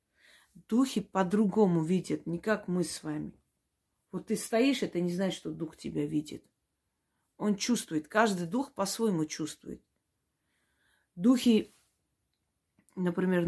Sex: female